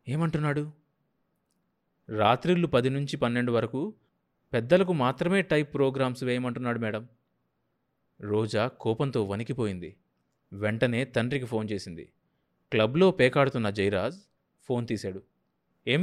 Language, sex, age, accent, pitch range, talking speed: Telugu, male, 20-39, native, 115-190 Hz, 95 wpm